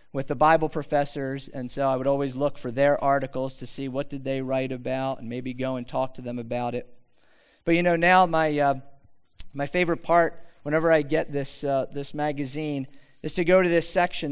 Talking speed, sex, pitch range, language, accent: 215 wpm, male, 140-170 Hz, English, American